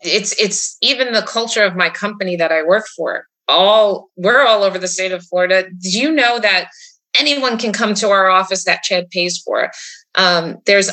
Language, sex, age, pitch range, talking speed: English, female, 30-49, 180-230 Hz, 200 wpm